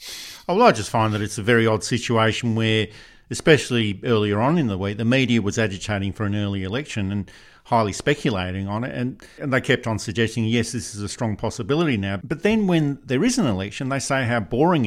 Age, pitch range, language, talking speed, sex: 50-69, 105-130 Hz, English, 220 wpm, male